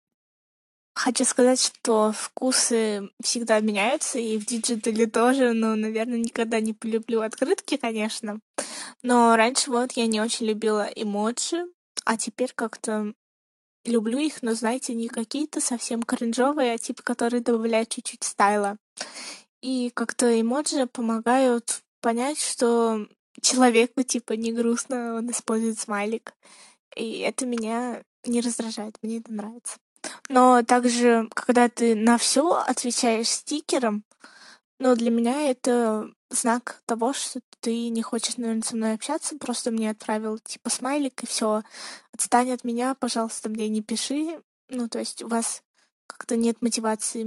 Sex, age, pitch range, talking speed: female, 20-39, 225-250 Hz, 135 wpm